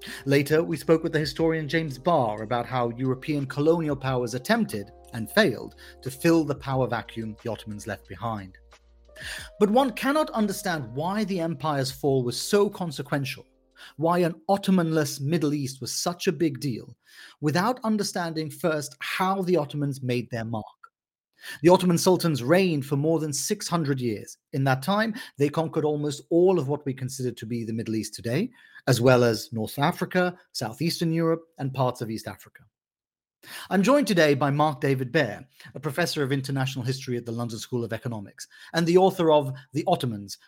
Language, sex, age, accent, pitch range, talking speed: English, male, 40-59, British, 125-170 Hz, 175 wpm